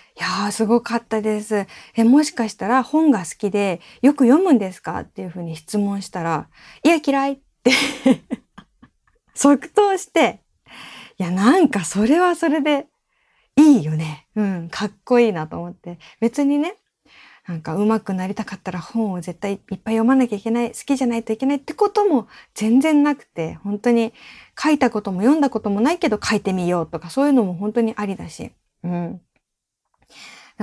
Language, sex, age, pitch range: Japanese, female, 20-39, 180-255 Hz